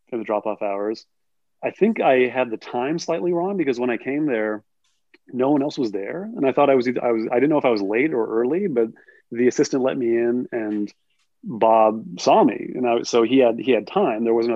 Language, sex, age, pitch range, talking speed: English, male, 30-49, 105-130 Hz, 230 wpm